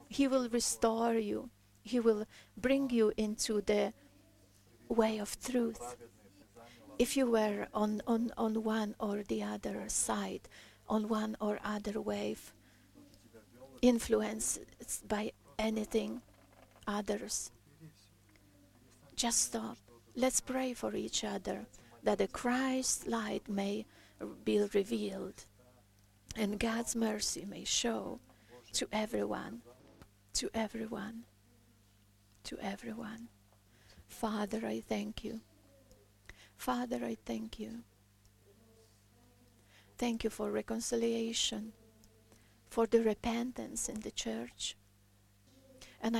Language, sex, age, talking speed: English, female, 40-59, 100 wpm